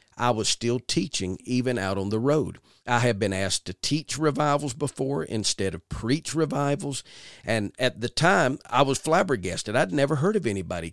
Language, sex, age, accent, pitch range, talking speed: English, male, 50-69, American, 105-145 Hz, 180 wpm